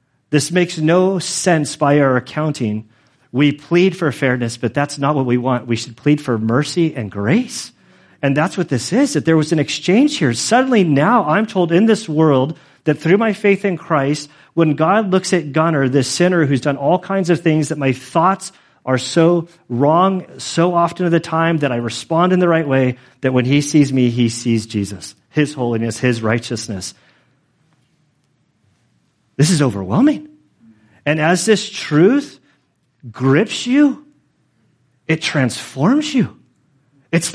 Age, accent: 40-59, American